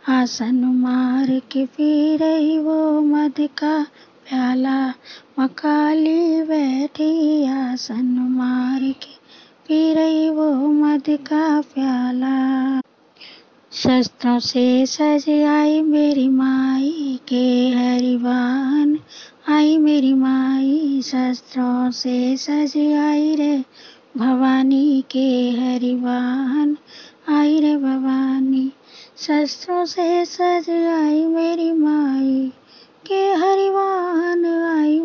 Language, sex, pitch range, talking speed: Hindi, female, 265-330 Hz, 80 wpm